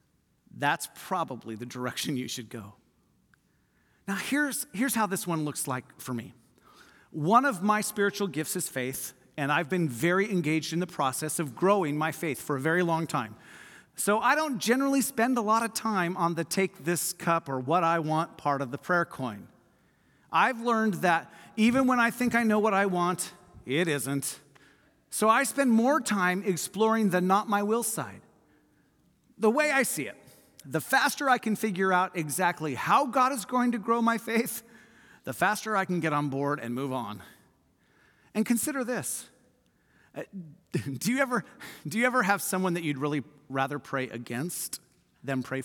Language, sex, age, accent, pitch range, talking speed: English, male, 40-59, American, 145-220 Hz, 180 wpm